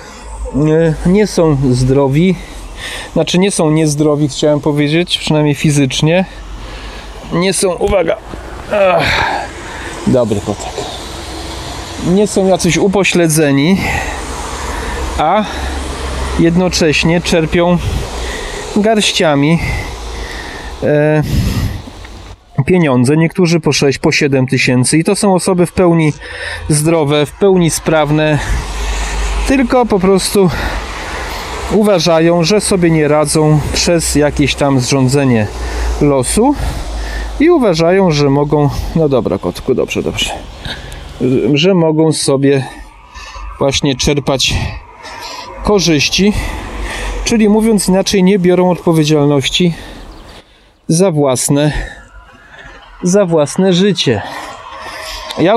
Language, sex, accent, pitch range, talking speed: Polish, male, native, 140-185 Hz, 90 wpm